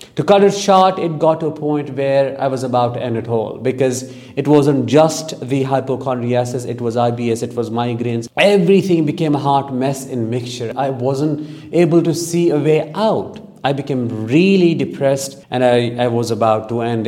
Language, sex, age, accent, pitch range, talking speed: English, male, 50-69, Indian, 125-150 Hz, 195 wpm